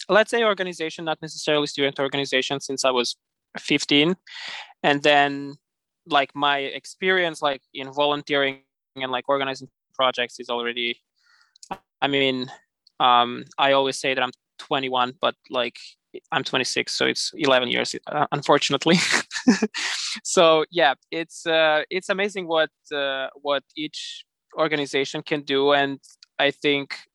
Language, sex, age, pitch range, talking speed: English, male, 20-39, 135-155 Hz, 130 wpm